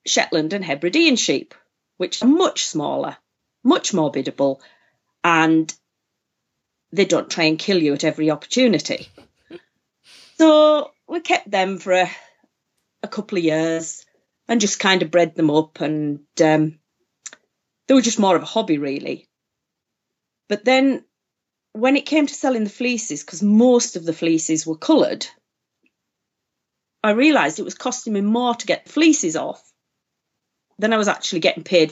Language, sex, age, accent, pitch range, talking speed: English, female, 40-59, British, 165-255 Hz, 155 wpm